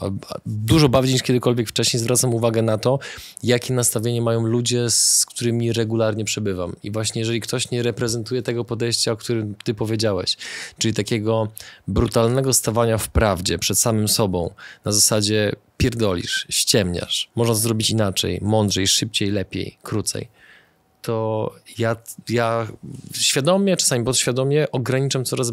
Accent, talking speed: native, 135 wpm